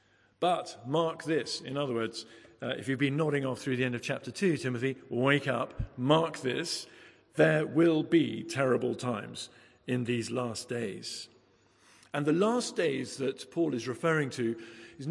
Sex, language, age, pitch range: male, English, 50-69, 115-150 Hz